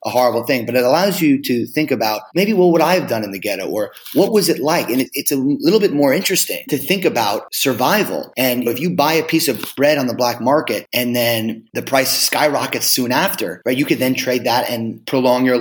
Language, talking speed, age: English, 245 wpm, 30-49